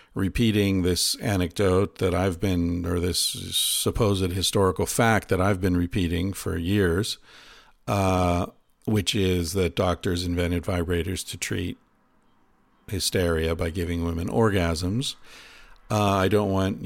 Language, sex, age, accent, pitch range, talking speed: English, male, 50-69, American, 90-105 Hz, 125 wpm